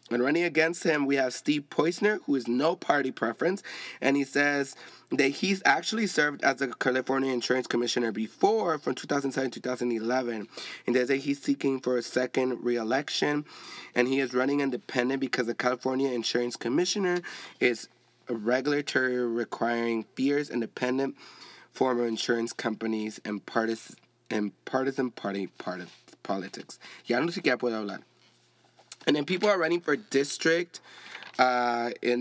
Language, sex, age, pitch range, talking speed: English, male, 20-39, 120-150 Hz, 145 wpm